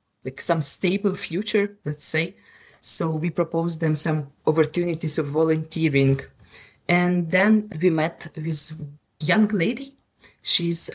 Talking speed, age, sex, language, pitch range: 125 wpm, 20-39, female, English, 160-185 Hz